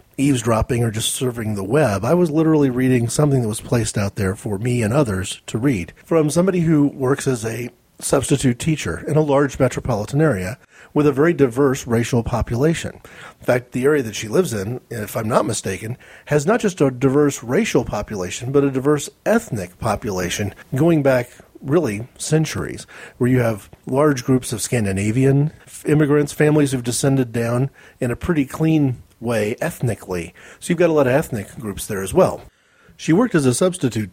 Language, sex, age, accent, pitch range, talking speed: English, male, 40-59, American, 110-150 Hz, 180 wpm